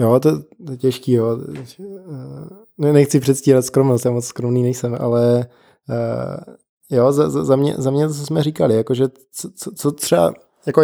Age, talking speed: 20-39, 175 wpm